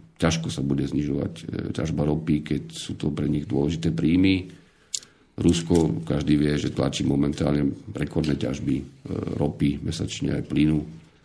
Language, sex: Slovak, male